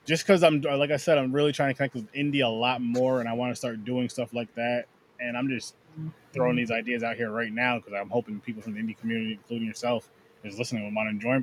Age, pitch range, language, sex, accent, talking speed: 20-39, 120-145 Hz, English, male, American, 265 wpm